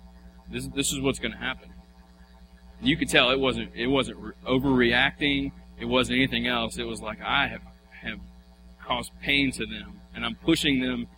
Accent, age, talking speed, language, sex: American, 30-49, 175 wpm, English, male